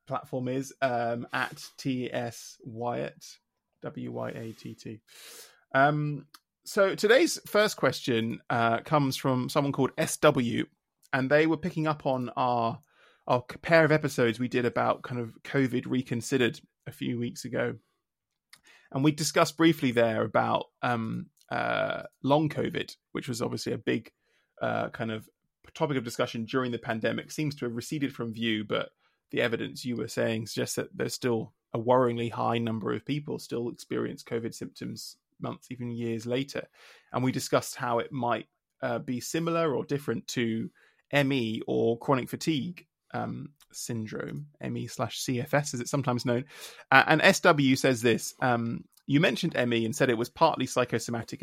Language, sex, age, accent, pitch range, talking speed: English, male, 20-39, British, 115-145 Hz, 160 wpm